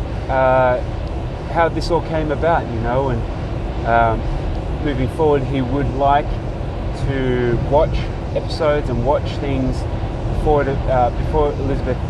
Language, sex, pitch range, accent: English, male, 115-140 Hz, Australian